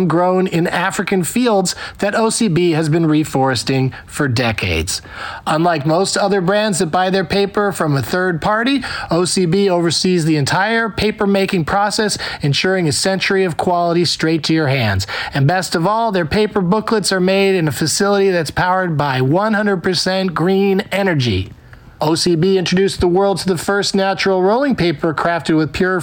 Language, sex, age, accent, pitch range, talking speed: English, male, 40-59, American, 160-200 Hz, 160 wpm